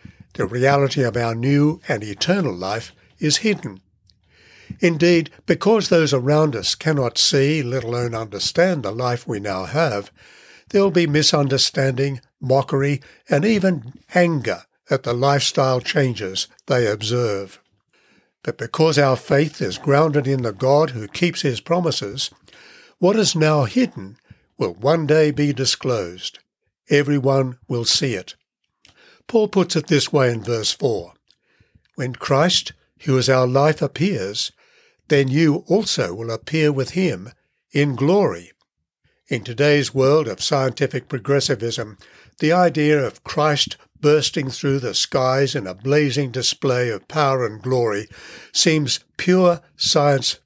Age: 60-79